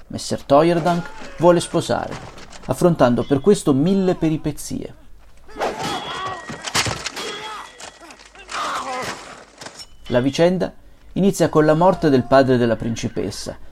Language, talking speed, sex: Italian, 85 wpm, male